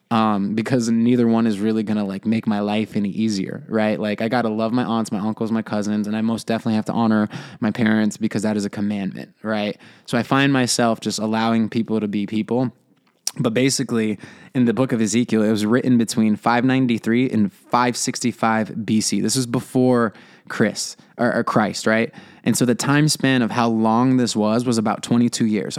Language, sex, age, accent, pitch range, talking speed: English, male, 20-39, American, 110-130 Hz, 205 wpm